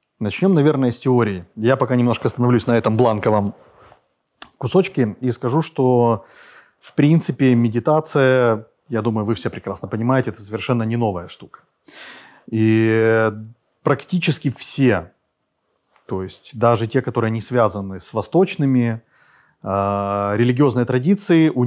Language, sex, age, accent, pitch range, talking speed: Ukrainian, male, 30-49, native, 115-150 Hz, 125 wpm